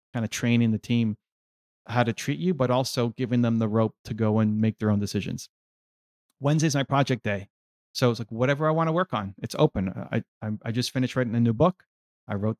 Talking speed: 230 wpm